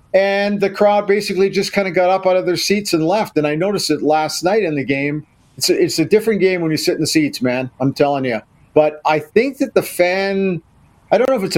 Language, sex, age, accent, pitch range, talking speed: English, male, 50-69, American, 145-185 Hz, 265 wpm